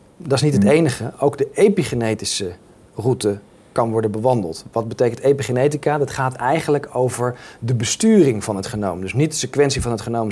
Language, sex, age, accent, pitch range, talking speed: Dutch, male, 40-59, Dutch, 115-150 Hz, 180 wpm